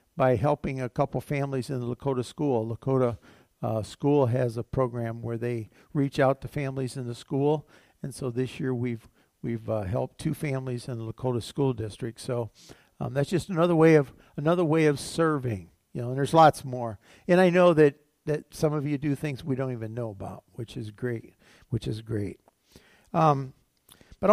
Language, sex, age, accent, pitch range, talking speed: English, male, 50-69, American, 115-145 Hz, 195 wpm